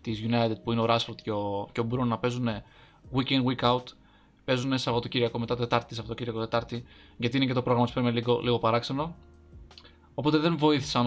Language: Greek